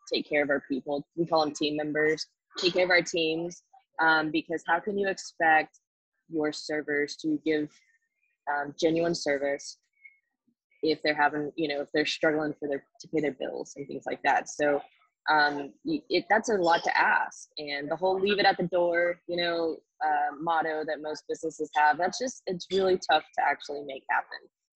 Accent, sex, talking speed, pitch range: American, female, 190 wpm, 150-195 Hz